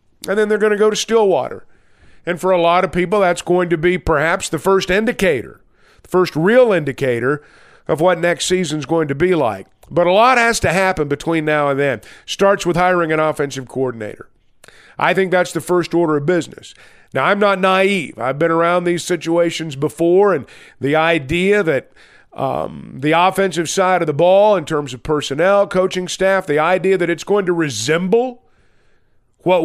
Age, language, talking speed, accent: 50-69, English, 190 wpm, American